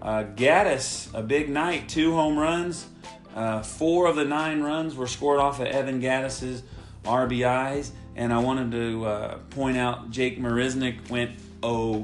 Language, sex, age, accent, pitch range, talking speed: English, male, 40-59, American, 120-145 Hz, 160 wpm